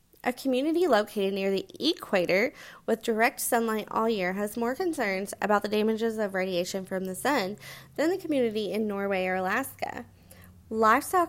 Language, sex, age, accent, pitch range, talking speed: English, female, 20-39, American, 180-230 Hz, 160 wpm